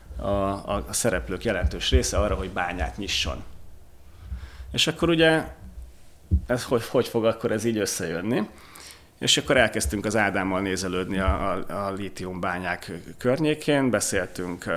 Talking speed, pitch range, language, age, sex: 130 wpm, 90-105 Hz, Hungarian, 30-49, male